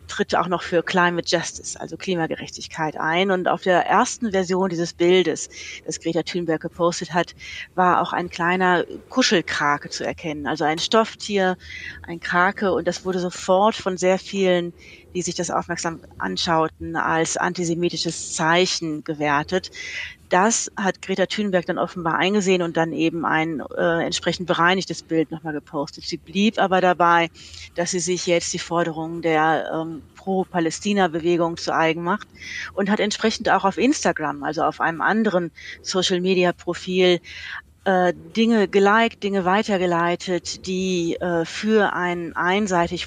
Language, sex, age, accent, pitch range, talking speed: German, female, 30-49, German, 165-185 Hz, 140 wpm